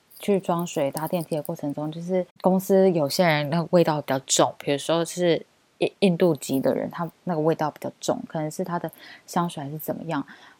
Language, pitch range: Chinese, 155-195 Hz